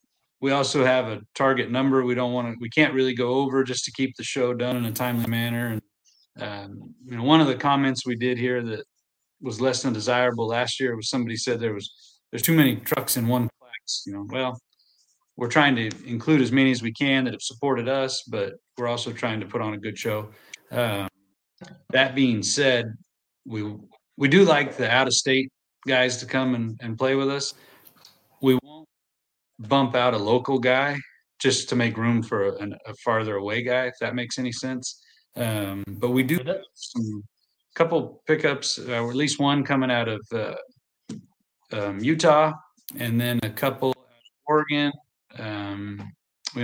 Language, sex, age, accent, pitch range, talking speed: English, male, 40-59, American, 115-135 Hz, 195 wpm